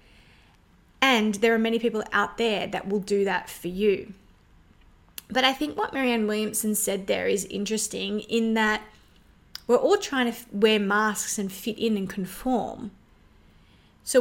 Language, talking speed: English, 155 wpm